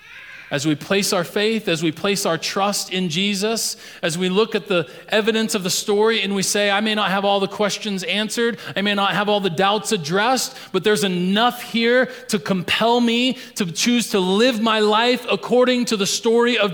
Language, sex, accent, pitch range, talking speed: English, male, American, 200-245 Hz, 210 wpm